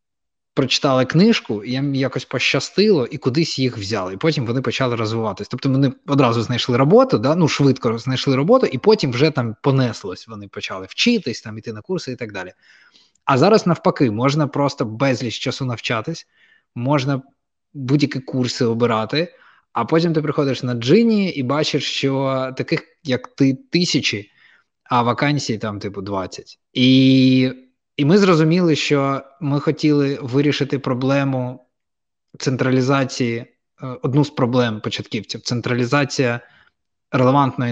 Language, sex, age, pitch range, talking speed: Ukrainian, male, 20-39, 120-145 Hz, 140 wpm